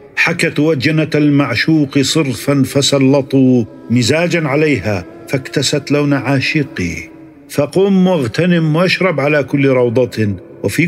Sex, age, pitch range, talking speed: male, 50-69, 120-160 Hz, 95 wpm